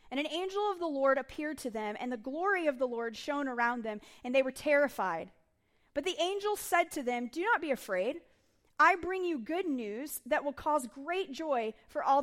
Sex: female